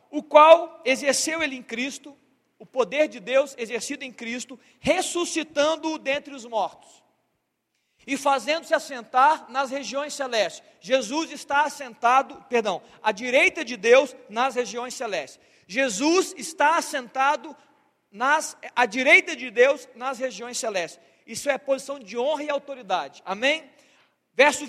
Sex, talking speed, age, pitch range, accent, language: male, 130 wpm, 40-59, 250-300 Hz, Brazilian, Portuguese